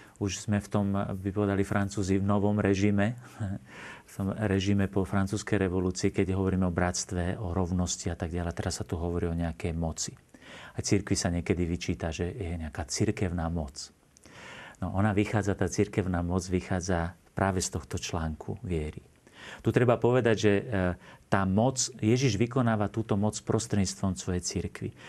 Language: Slovak